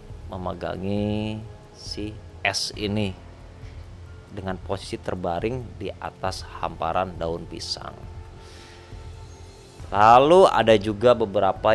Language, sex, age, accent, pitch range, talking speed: Indonesian, male, 30-49, native, 90-105 Hz, 80 wpm